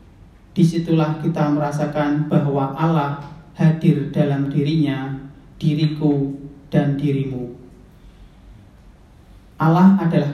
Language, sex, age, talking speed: Indonesian, male, 40-59, 75 wpm